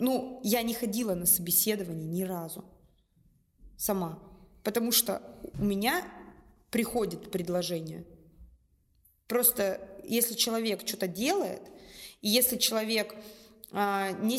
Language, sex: Russian, female